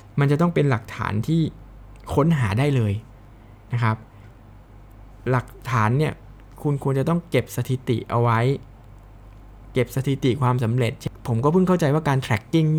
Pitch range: 110-140 Hz